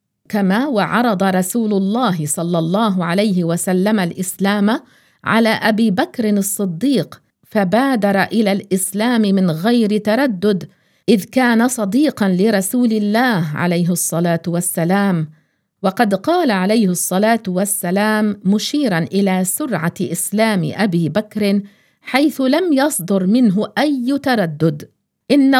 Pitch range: 185-235 Hz